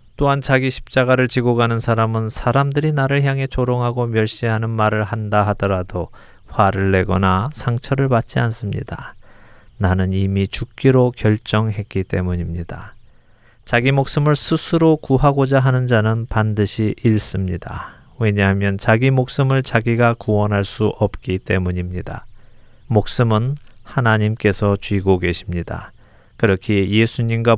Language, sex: Korean, male